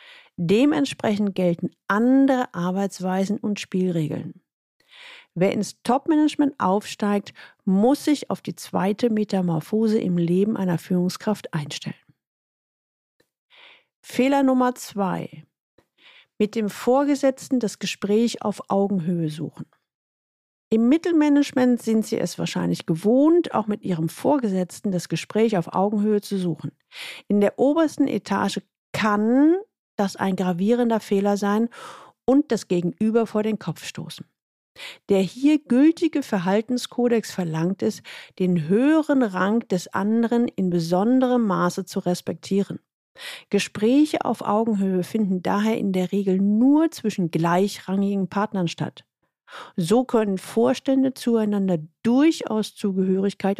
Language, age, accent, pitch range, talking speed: German, 50-69, German, 185-250 Hz, 115 wpm